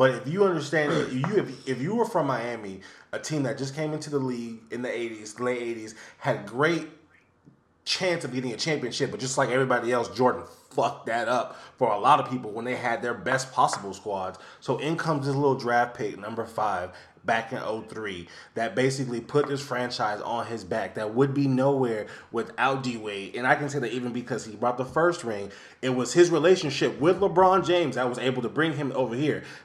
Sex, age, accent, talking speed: male, 20-39, American, 215 wpm